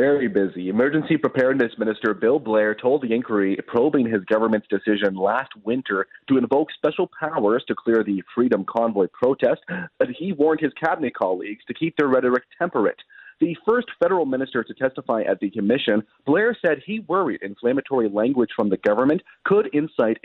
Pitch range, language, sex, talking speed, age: 110-160 Hz, English, male, 170 wpm, 30-49